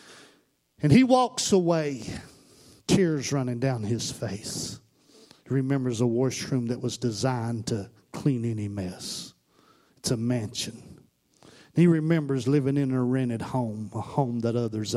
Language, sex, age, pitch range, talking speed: English, male, 50-69, 115-140 Hz, 135 wpm